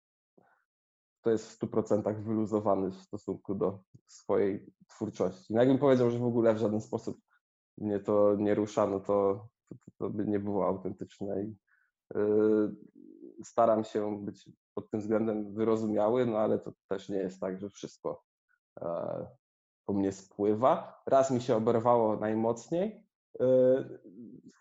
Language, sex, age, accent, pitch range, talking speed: Polish, male, 20-39, native, 105-120 Hz, 150 wpm